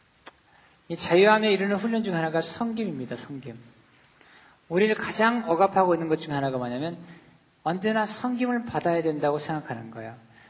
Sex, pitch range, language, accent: male, 140-195 Hz, Korean, native